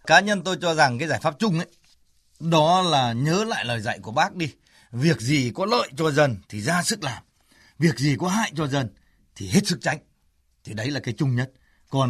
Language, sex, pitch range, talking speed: Vietnamese, male, 120-170 Hz, 230 wpm